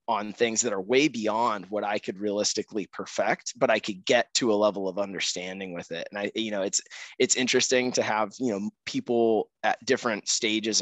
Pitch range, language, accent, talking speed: 95-110 Hz, English, American, 205 wpm